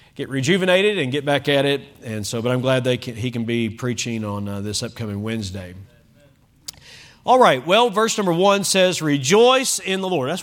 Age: 40-59